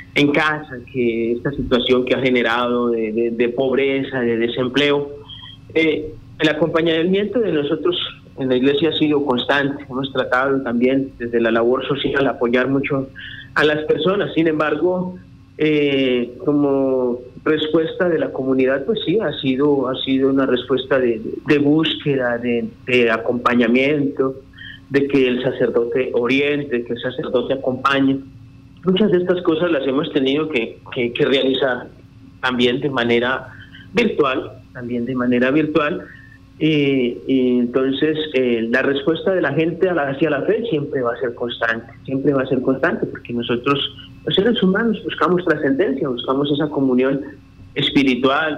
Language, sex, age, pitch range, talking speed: Spanish, male, 30-49, 125-150 Hz, 150 wpm